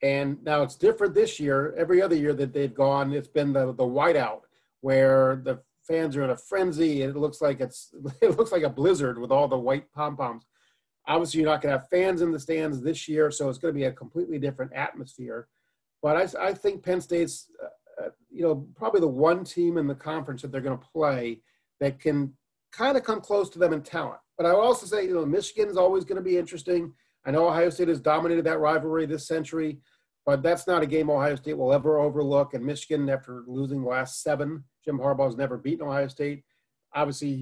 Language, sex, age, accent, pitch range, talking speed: English, male, 40-59, American, 140-180 Hz, 220 wpm